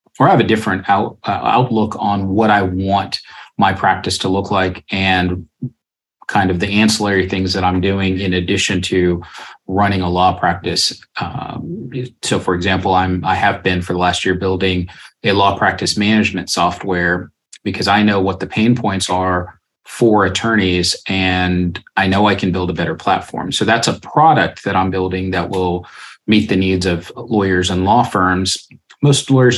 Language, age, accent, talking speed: English, 30-49, American, 180 wpm